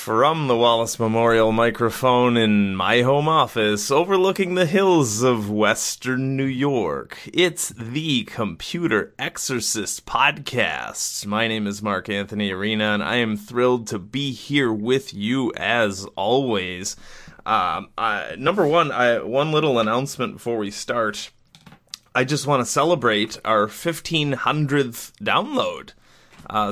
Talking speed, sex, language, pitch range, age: 125 wpm, male, English, 105-130 Hz, 30-49